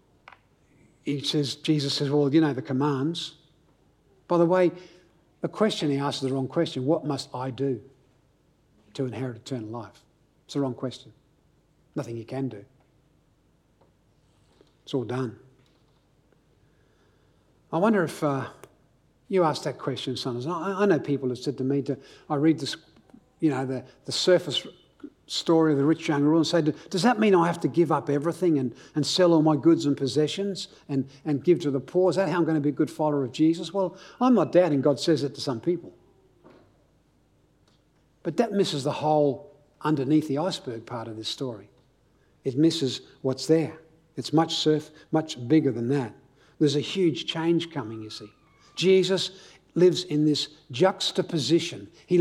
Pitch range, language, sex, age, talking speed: 135-170 Hz, English, male, 60-79, 175 wpm